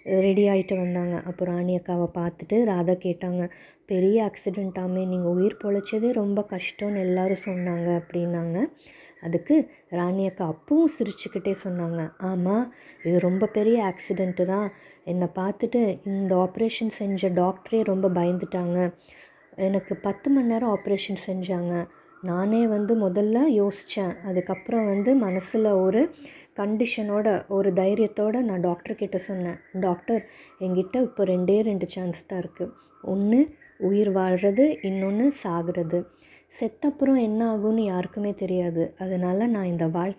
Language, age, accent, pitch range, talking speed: English, 20-39, Indian, 180-215 Hz, 85 wpm